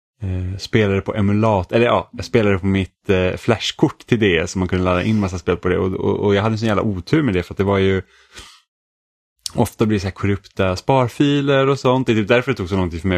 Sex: male